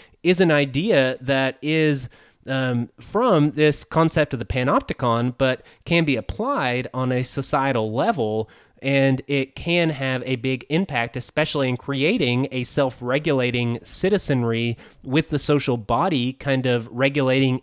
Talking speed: 135 wpm